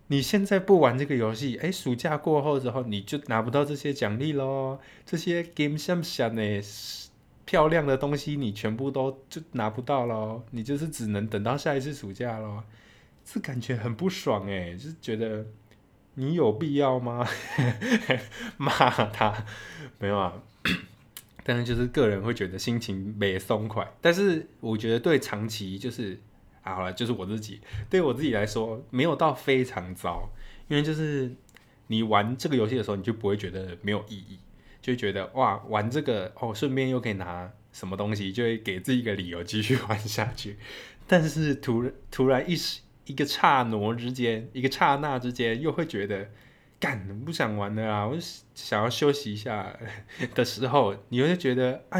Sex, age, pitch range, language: male, 20-39, 105-140 Hz, Chinese